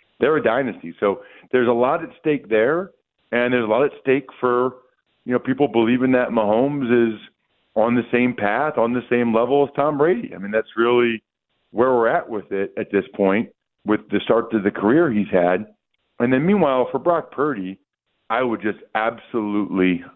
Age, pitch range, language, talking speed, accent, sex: 40-59, 100-125 Hz, English, 195 wpm, American, male